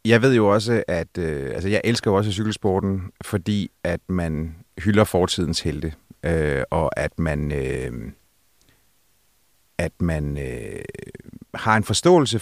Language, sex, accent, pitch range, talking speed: Danish, male, native, 90-115 Hz, 135 wpm